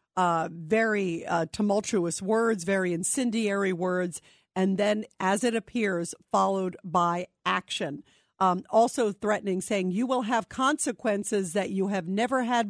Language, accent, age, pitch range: English, American, 50-69, 185-215 Hz